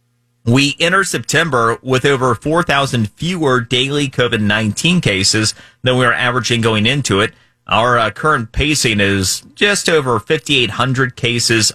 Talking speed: 135 wpm